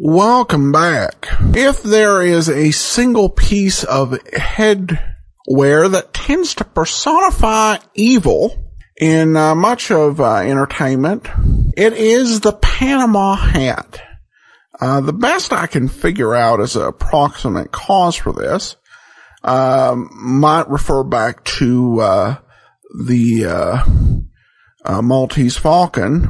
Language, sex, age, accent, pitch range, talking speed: English, male, 50-69, American, 125-195 Hz, 115 wpm